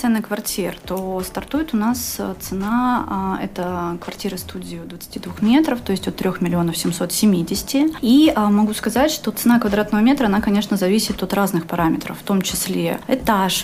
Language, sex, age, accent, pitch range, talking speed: Russian, female, 30-49, native, 195-230 Hz, 165 wpm